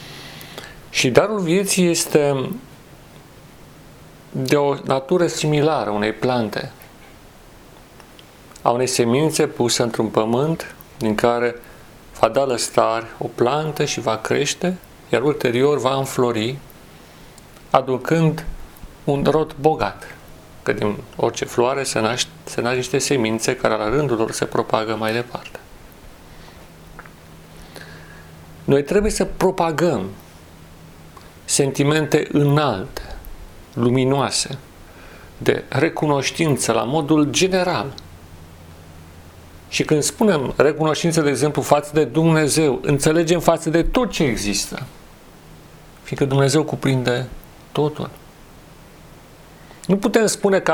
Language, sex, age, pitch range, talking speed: Romanian, male, 40-59, 110-155 Hz, 100 wpm